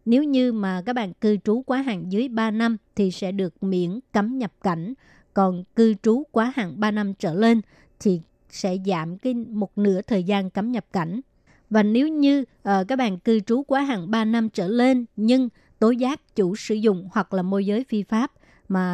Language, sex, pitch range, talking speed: Vietnamese, male, 195-235 Hz, 210 wpm